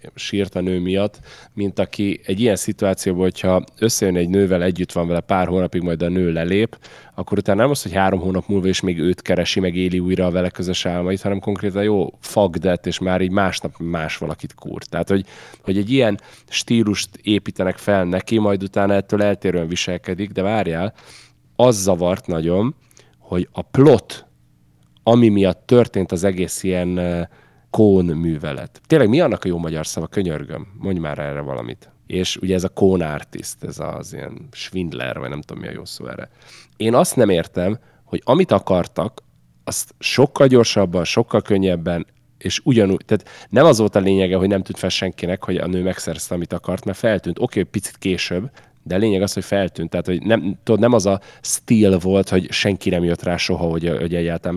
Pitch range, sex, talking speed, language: 90-100 Hz, male, 190 wpm, Hungarian